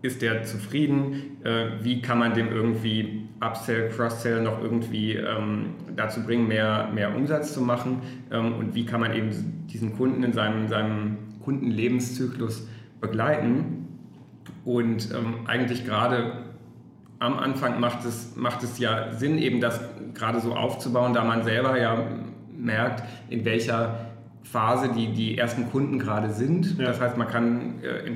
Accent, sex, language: German, male, English